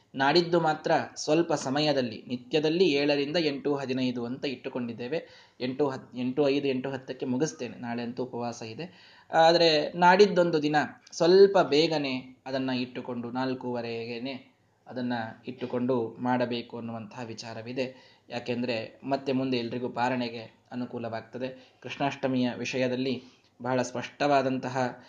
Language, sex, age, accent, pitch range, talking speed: Kannada, male, 20-39, native, 125-160 Hz, 95 wpm